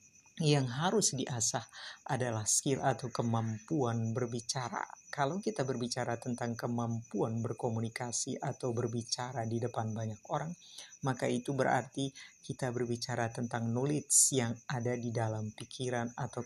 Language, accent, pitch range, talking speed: Indonesian, native, 120-135 Hz, 120 wpm